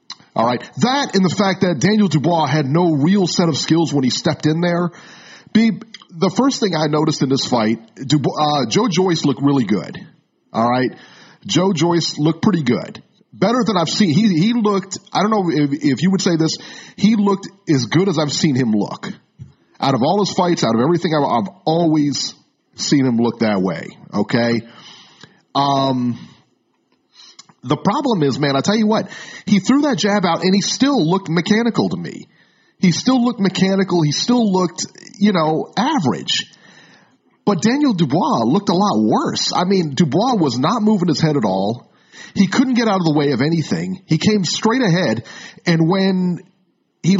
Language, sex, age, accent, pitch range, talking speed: English, male, 40-59, American, 155-210 Hz, 185 wpm